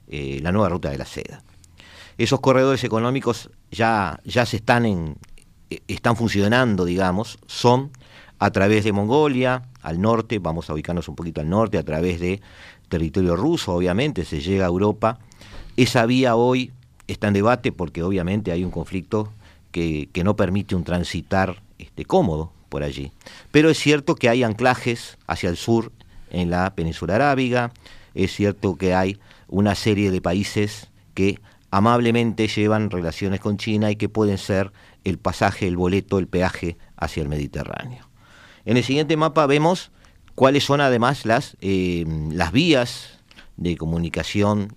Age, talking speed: 50-69, 160 wpm